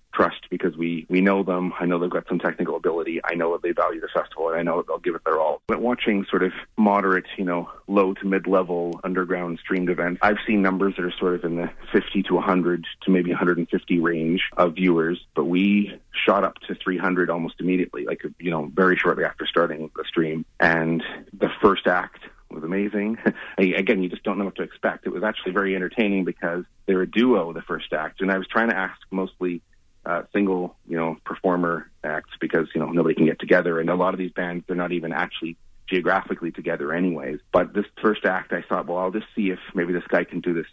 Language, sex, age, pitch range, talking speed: English, male, 30-49, 85-95 Hz, 225 wpm